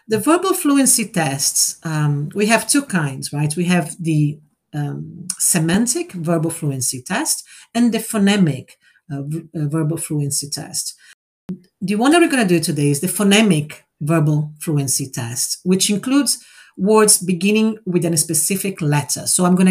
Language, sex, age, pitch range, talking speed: English, female, 50-69, 150-205 Hz, 155 wpm